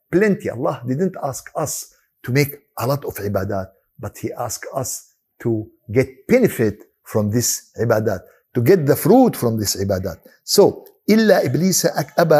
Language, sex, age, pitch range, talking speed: Arabic, male, 60-79, 140-235 Hz, 155 wpm